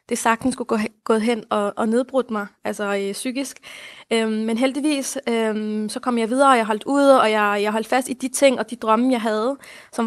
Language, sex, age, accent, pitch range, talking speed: Danish, female, 20-39, native, 225-260 Hz, 240 wpm